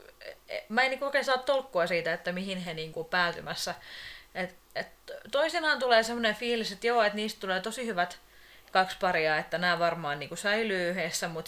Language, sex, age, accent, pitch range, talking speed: Finnish, female, 30-49, native, 170-220 Hz, 190 wpm